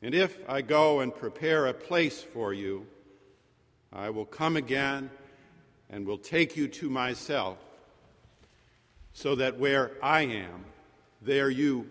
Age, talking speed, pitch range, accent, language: 50-69, 135 wpm, 115-145 Hz, American, English